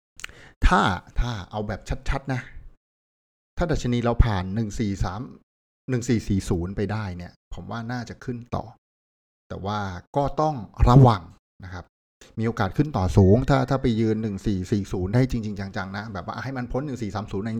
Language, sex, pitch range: Thai, male, 95-125 Hz